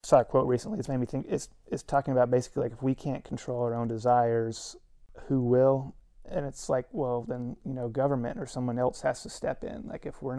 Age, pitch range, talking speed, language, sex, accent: 30-49, 120-135 Hz, 235 wpm, English, male, American